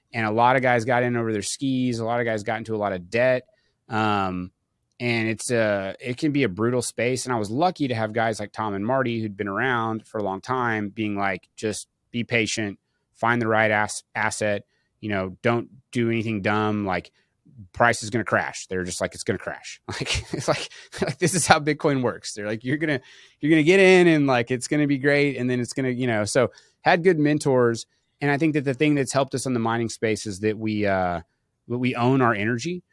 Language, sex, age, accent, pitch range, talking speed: English, male, 30-49, American, 105-130 Hz, 240 wpm